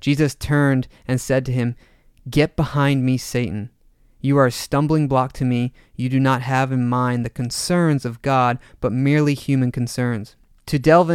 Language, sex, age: English, male, 30-49